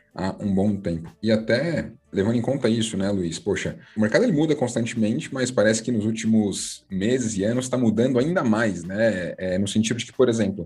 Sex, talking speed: male, 205 wpm